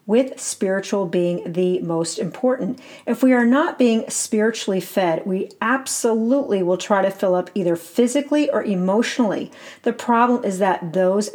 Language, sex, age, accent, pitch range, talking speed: English, female, 40-59, American, 175-235 Hz, 155 wpm